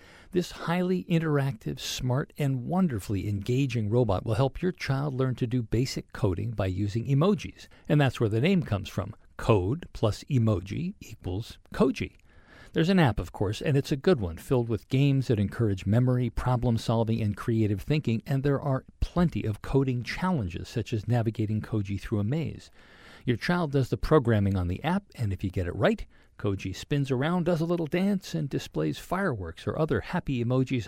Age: 50-69